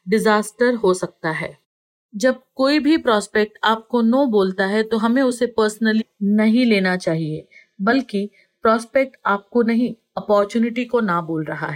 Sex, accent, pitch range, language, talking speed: female, native, 205-240 Hz, Hindi, 145 wpm